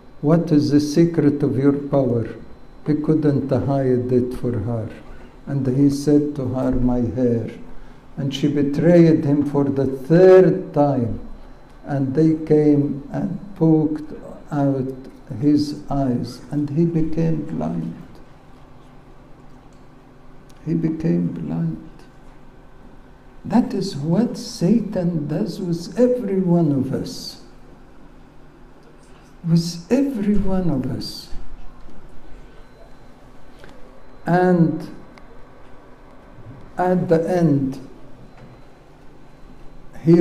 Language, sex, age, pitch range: English, male, 60-79, 130-165 Hz